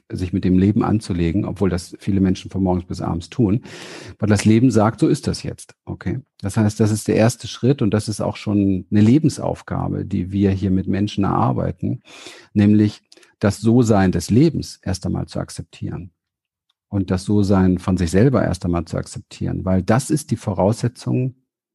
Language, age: German, 50-69